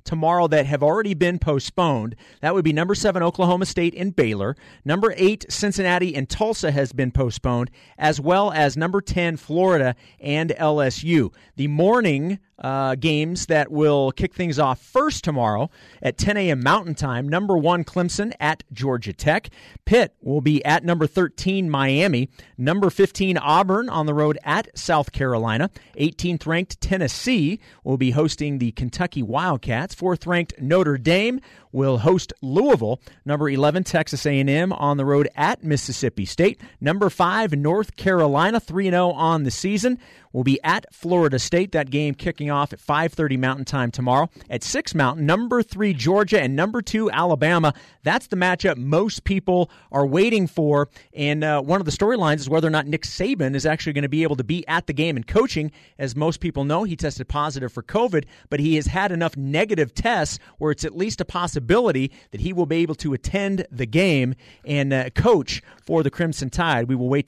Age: 40-59